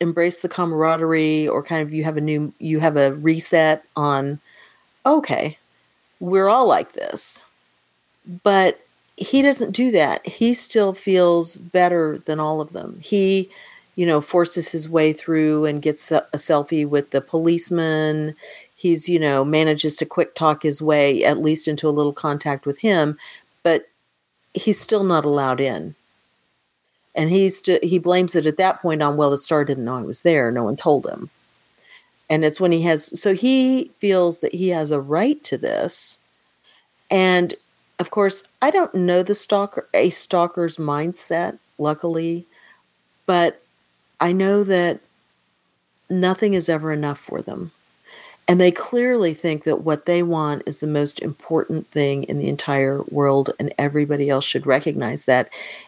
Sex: female